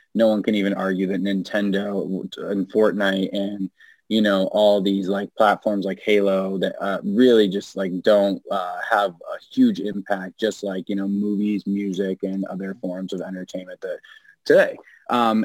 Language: English